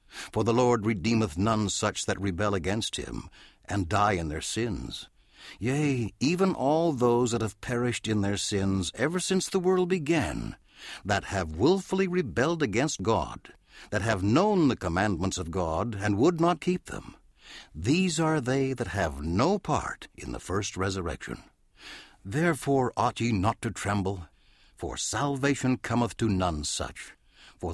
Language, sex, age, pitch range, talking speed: English, male, 60-79, 95-135 Hz, 155 wpm